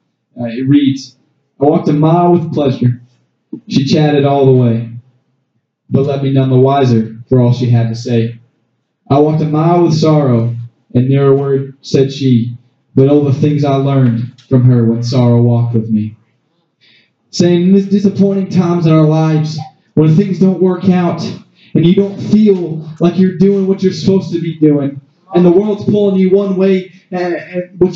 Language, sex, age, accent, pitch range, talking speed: English, male, 20-39, American, 140-200 Hz, 185 wpm